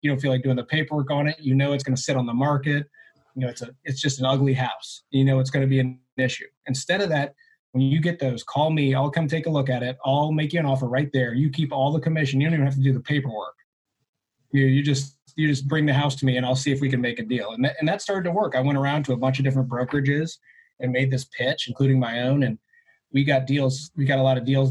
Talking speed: 295 wpm